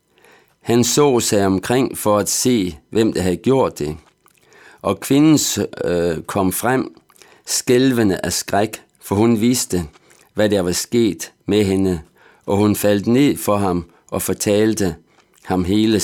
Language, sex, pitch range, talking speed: Danish, male, 90-120 Hz, 145 wpm